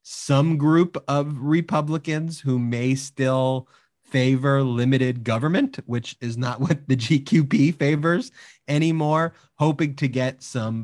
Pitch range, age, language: 120-150 Hz, 30-49, English